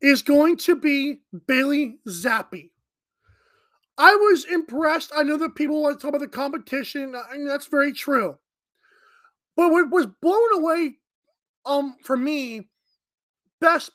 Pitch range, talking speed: 265-335 Hz, 140 wpm